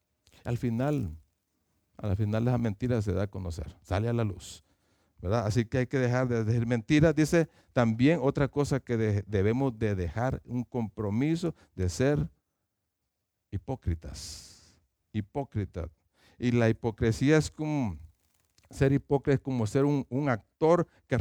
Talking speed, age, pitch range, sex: 145 wpm, 50-69, 95-135 Hz, male